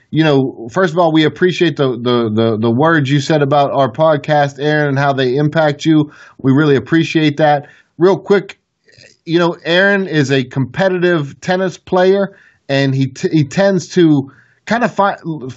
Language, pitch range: English, 135-170 Hz